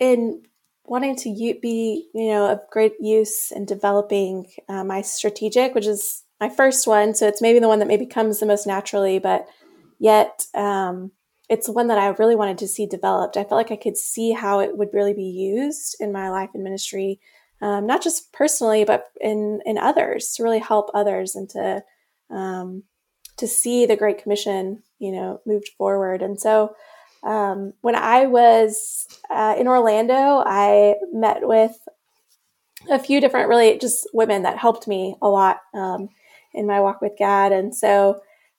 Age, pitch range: 20-39, 200-235 Hz